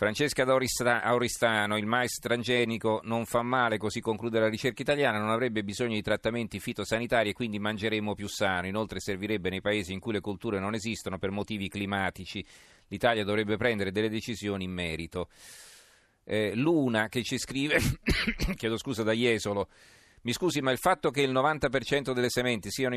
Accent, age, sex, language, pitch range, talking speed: native, 40-59, male, Italian, 100-120 Hz, 165 wpm